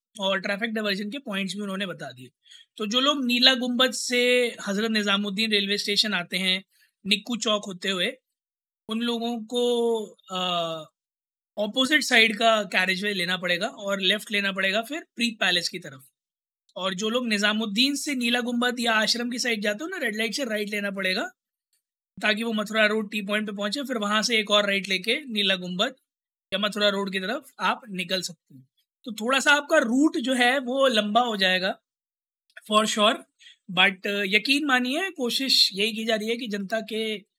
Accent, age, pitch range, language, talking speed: native, 20-39, 200-240 Hz, Hindi, 185 wpm